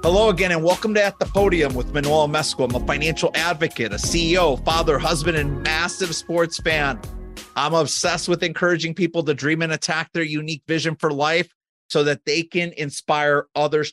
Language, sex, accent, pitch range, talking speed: English, male, American, 145-180 Hz, 185 wpm